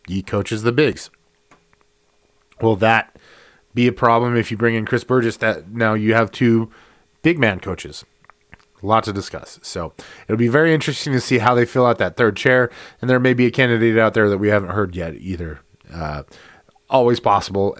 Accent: American